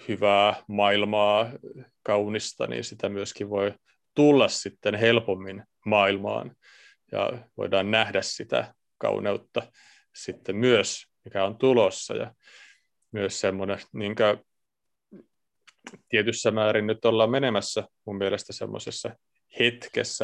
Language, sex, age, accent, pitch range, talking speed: Finnish, male, 30-49, native, 100-125 Hz, 100 wpm